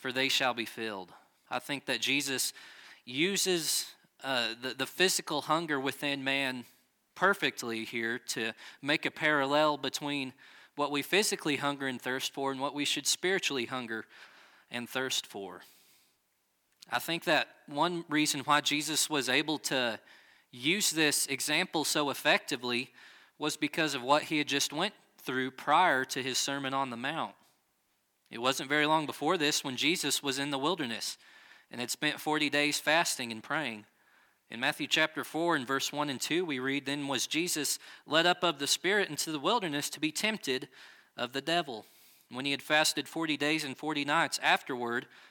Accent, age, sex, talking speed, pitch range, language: American, 20-39, male, 170 wpm, 130-155 Hz, English